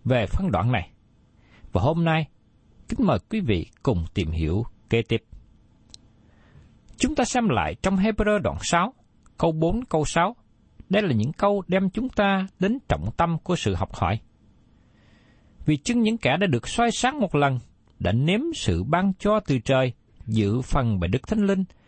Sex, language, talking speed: male, Vietnamese, 180 wpm